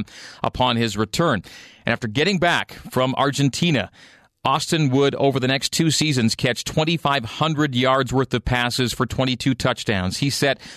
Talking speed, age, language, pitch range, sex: 150 wpm, 40-59, English, 120-145 Hz, male